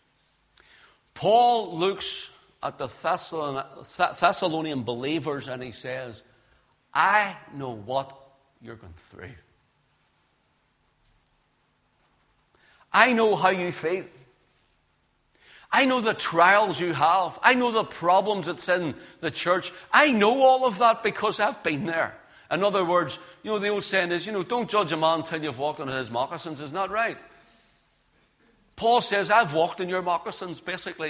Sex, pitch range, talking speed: male, 160-210 Hz, 145 wpm